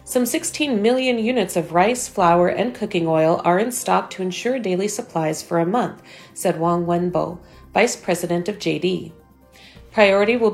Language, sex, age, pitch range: Chinese, female, 40-59, 170-215 Hz